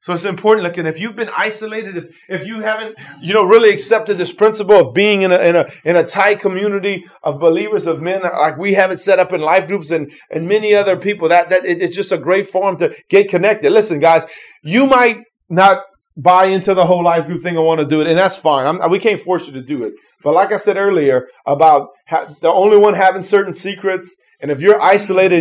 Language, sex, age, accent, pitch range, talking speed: English, male, 30-49, American, 155-200 Hz, 245 wpm